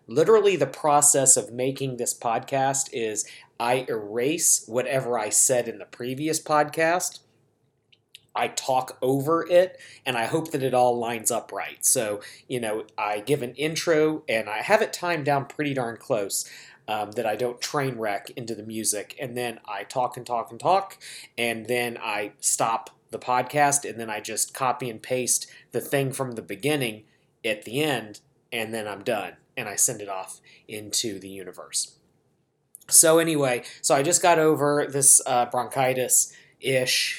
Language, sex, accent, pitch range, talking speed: English, male, American, 115-150 Hz, 170 wpm